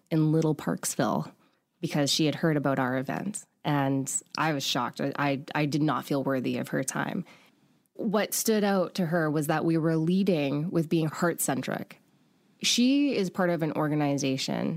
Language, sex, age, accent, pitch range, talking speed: English, female, 20-39, American, 140-170 Hz, 175 wpm